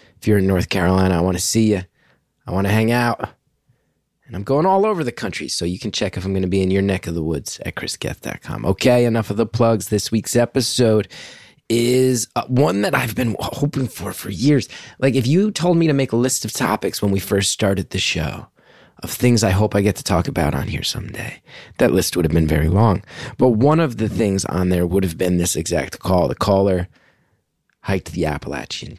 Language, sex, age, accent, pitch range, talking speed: English, male, 30-49, American, 100-135 Hz, 230 wpm